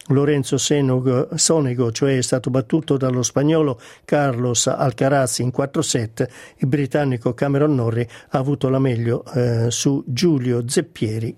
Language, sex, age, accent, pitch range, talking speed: Italian, male, 50-69, native, 125-150 Hz, 125 wpm